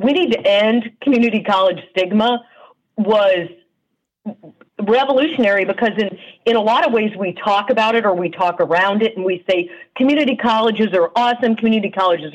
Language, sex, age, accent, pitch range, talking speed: English, female, 50-69, American, 180-230 Hz, 165 wpm